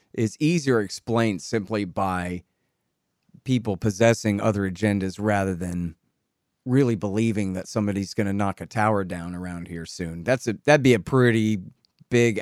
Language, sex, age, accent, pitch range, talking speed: English, male, 30-49, American, 105-130 Hz, 150 wpm